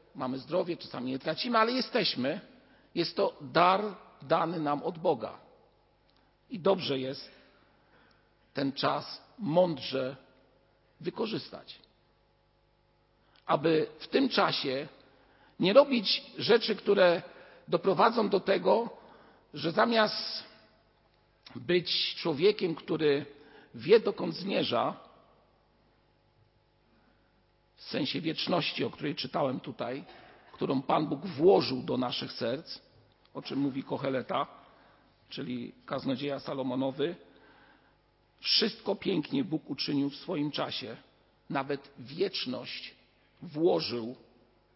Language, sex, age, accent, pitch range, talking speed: Polish, male, 50-69, native, 140-215 Hz, 95 wpm